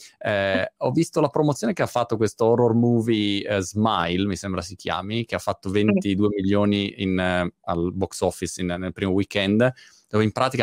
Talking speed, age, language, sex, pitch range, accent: 170 wpm, 20-39, Italian, male, 95-115 Hz, native